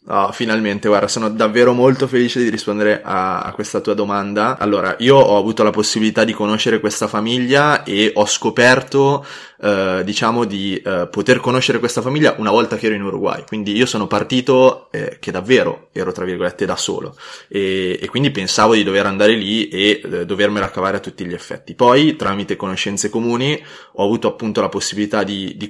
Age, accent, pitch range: 20-39, native, 100-120 Hz